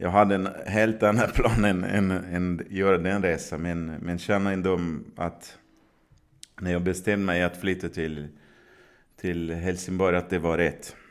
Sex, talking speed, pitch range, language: male, 155 wpm, 85-95 Hz, Swedish